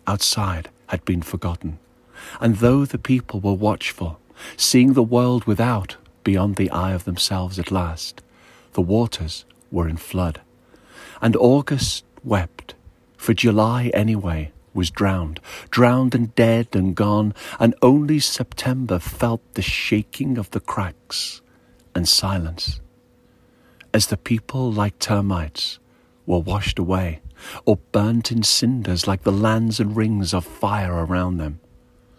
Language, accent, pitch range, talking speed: English, British, 90-115 Hz, 130 wpm